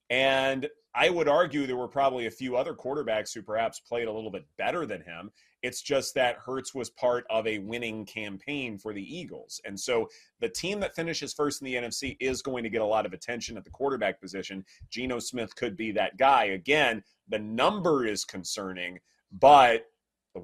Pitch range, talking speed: 115-150 Hz, 200 wpm